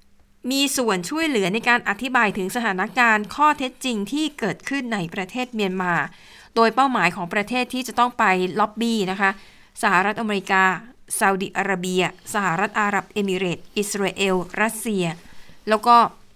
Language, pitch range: Thai, 190-235 Hz